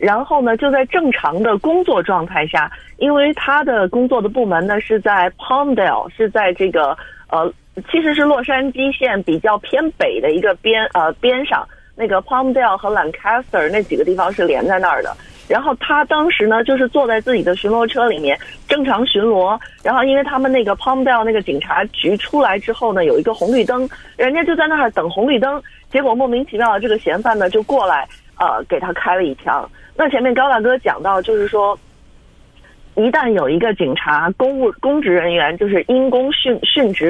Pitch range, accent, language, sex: 205-270 Hz, native, Chinese, female